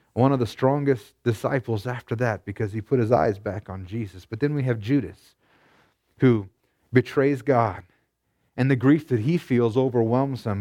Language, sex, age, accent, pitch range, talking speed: English, male, 30-49, American, 115-140 Hz, 175 wpm